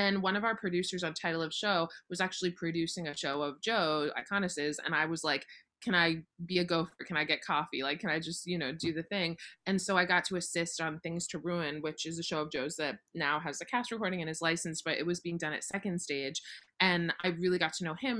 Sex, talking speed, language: female, 260 wpm, English